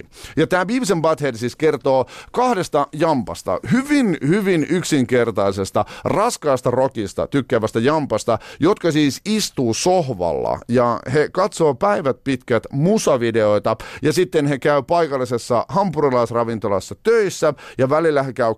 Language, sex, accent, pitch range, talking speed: Finnish, male, native, 120-180 Hz, 115 wpm